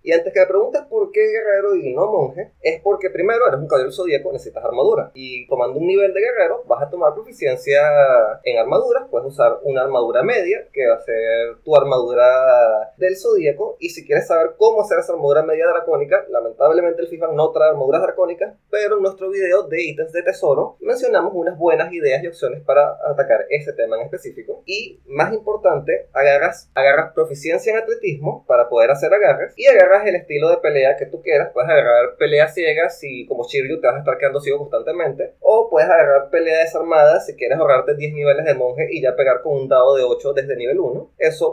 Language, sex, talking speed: Spanish, male, 205 wpm